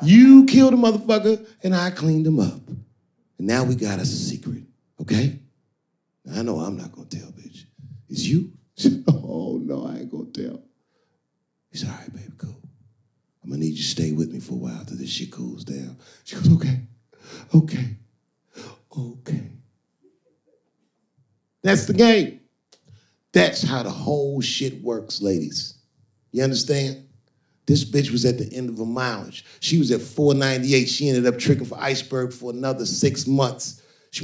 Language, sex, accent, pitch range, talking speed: English, male, American, 125-175 Hz, 165 wpm